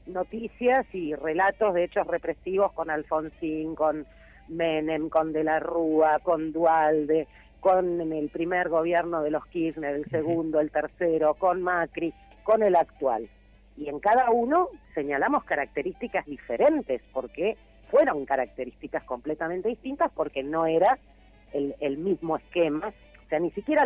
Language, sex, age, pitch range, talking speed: Spanish, female, 40-59, 145-190 Hz, 140 wpm